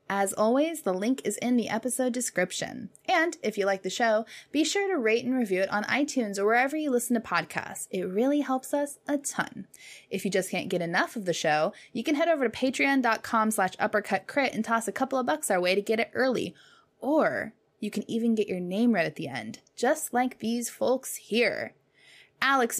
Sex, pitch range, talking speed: female, 190-265 Hz, 220 wpm